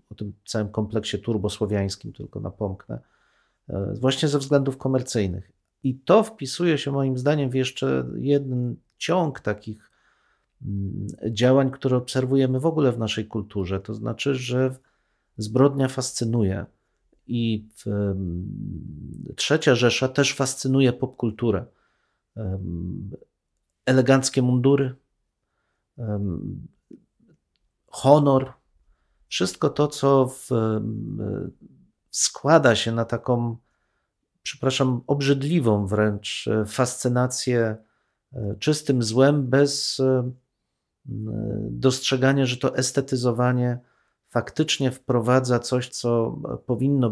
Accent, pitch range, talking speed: native, 110-135 Hz, 85 wpm